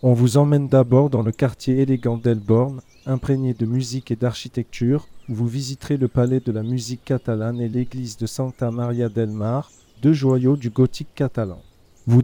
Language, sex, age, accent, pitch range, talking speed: French, male, 40-59, French, 115-135 Hz, 175 wpm